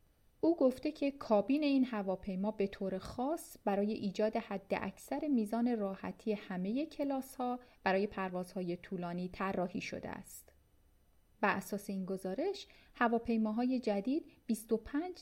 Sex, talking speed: female, 120 wpm